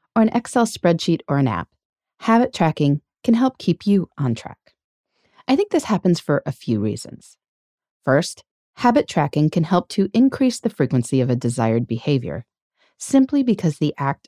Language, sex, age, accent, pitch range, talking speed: English, female, 30-49, American, 140-225 Hz, 170 wpm